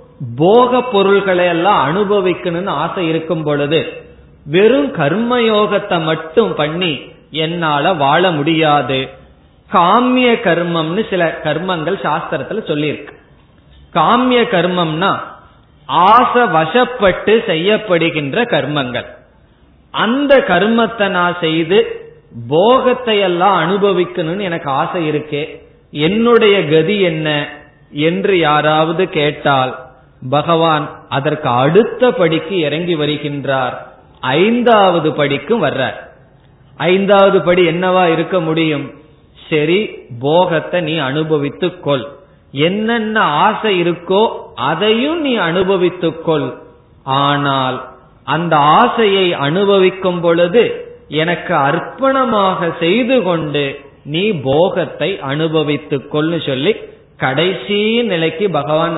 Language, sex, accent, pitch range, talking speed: Tamil, male, native, 150-200 Hz, 85 wpm